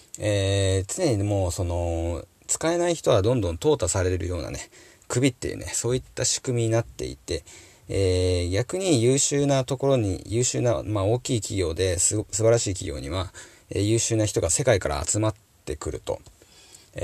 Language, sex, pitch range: Japanese, male, 90-115 Hz